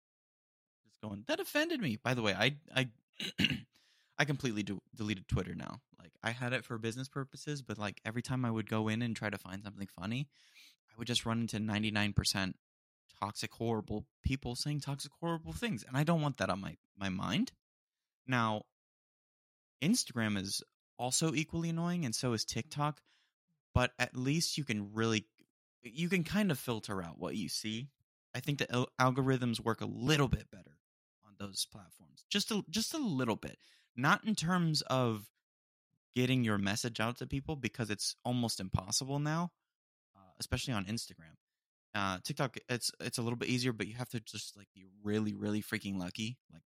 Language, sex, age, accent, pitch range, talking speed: English, male, 20-39, American, 100-130 Hz, 180 wpm